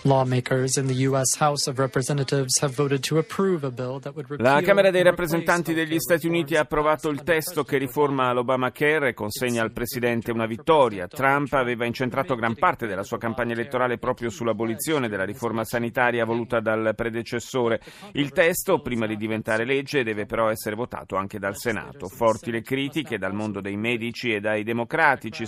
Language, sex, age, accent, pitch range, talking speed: Italian, male, 40-59, native, 110-140 Hz, 140 wpm